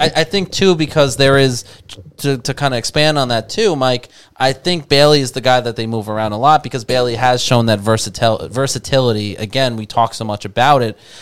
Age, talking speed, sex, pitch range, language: 20-39, 225 wpm, male, 110-130 Hz, English